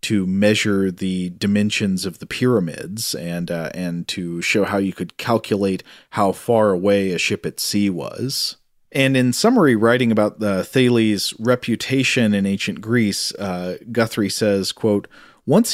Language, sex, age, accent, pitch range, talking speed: English, male, 40-59, American, 95-120 Hz, 155 wpm